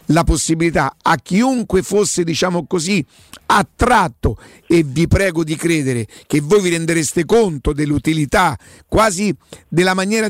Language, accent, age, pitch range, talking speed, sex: Italian, native, 50-69, 160-200 Hz, 115 wpm, male